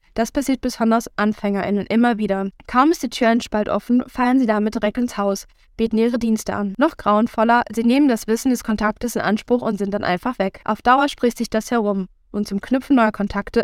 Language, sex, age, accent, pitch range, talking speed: German, female, 10-29, German, 200-235 Hz, 210 wpm